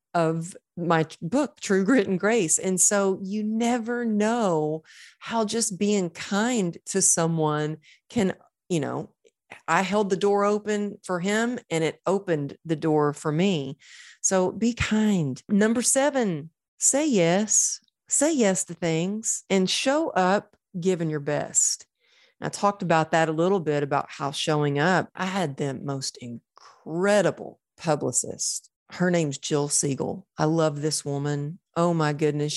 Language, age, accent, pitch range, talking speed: English, 40-59, American, 155-210 Hz, 150 wpm